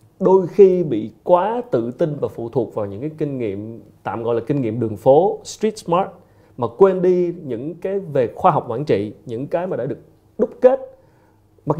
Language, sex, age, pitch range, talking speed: Vietnamese, male, 30-49, 115-160 Hz, 210 wpm